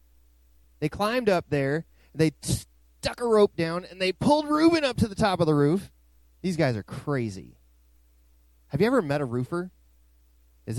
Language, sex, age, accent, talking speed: English, male, 30-49, American, 170 wpm